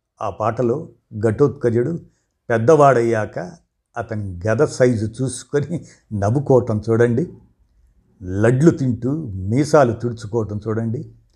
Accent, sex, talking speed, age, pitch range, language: native, male, 80 wpm, 60-79, 110-140 Hz, Telugu